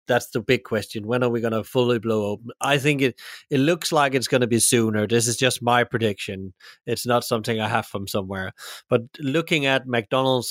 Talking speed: 225 wpm